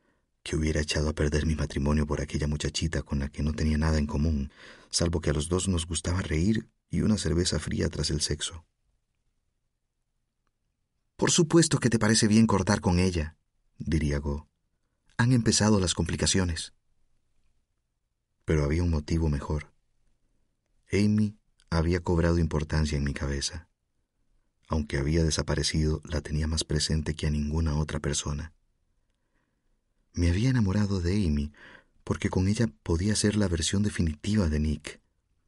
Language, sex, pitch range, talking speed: Spanish, male, 75-95 Hz, 145 wpm